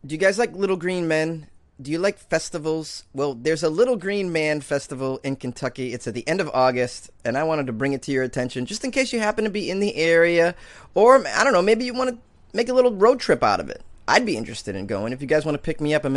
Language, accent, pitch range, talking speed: English, American, 130-170 Hz, 280 wpm